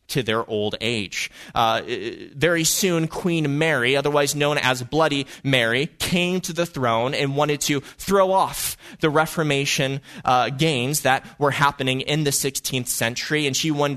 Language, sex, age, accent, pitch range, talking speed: English, male, 20-39, American, 135-180 Hz, 160 wpm